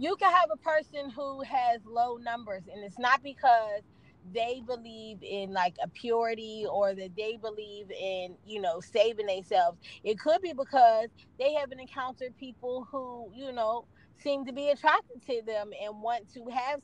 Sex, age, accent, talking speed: female, 20-39, American, 175 wpm